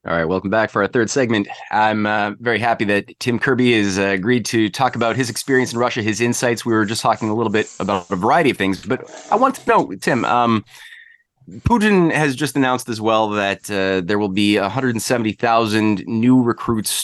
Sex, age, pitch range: male, 20-39, 95-115 Hz